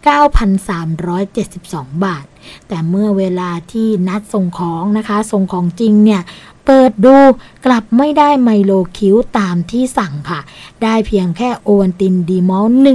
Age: 20-39